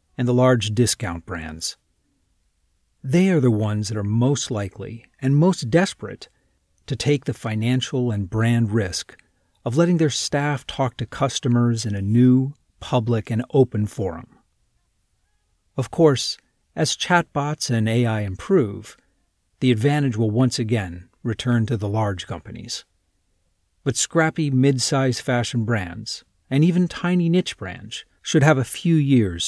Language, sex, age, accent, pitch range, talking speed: English, male, 40-59, American, 100-140 Hz, 140 wpm